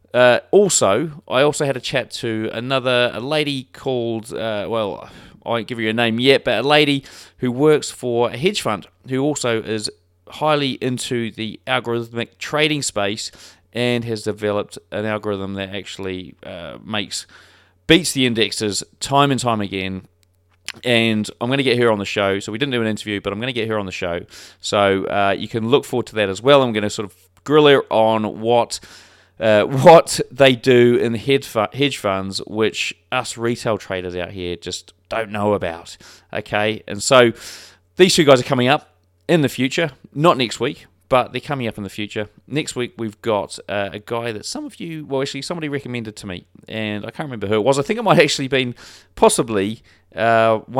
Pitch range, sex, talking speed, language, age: 100-135 Hz, male, 205 wpm, English, 30-49